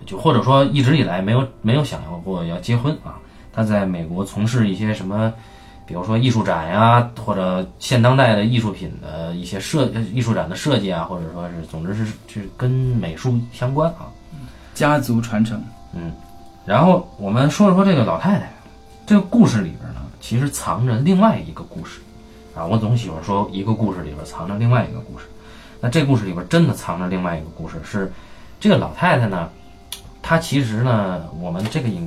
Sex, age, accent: male, 20-39, native